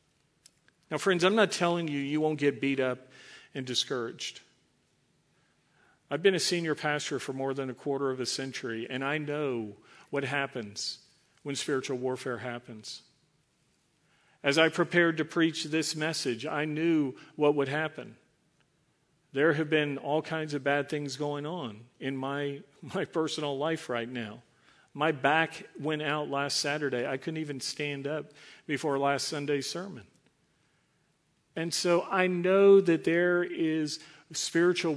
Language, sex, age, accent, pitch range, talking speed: English, male, 50-69, American, 140-165 Hz, 150 wpm